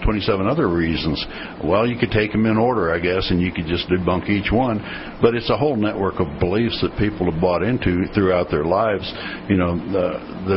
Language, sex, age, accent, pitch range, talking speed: English, male, 60-79, American, 85-100 Hz, 210 wpm